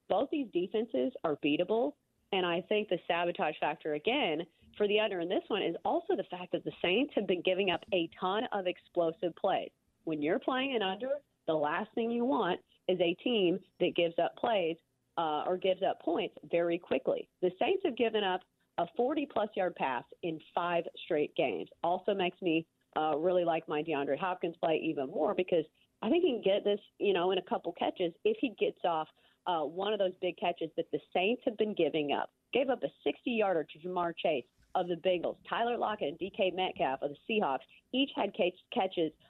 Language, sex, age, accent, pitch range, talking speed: English, female, 30-49, American, 165-215 Hz, 205 wpm